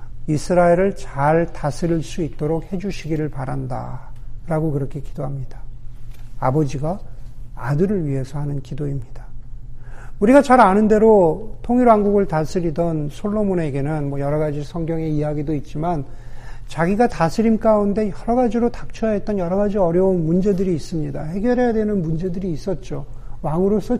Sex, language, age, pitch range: male, Korean, 50-69, 130-190 Hz